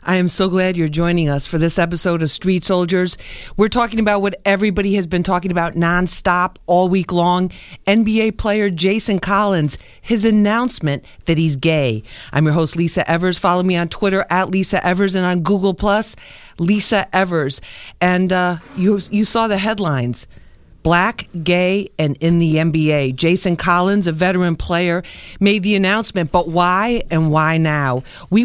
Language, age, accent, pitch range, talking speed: English, 50-69, American, 165-200 Hz, 165 wpm